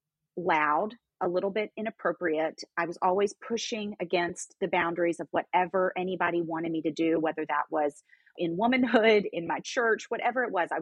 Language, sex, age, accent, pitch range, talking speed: English, female, 30-49, American, 175-230 Hz, 170 wpm